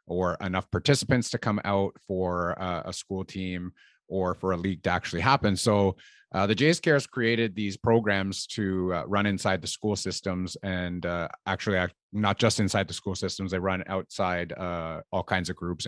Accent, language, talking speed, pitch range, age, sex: American, English, 190 wpm, 90-110 Hz, 30-49, male